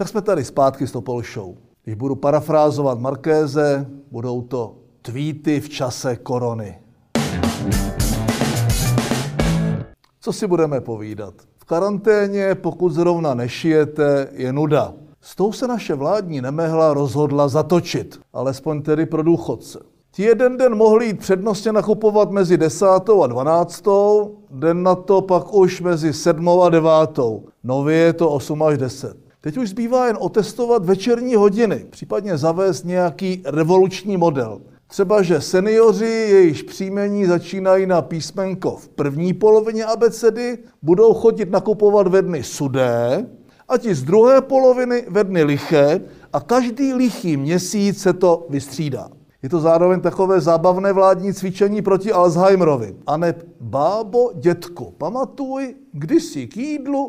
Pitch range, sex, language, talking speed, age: 145-205 Hz, male, Czech, 135 wpm, 60-79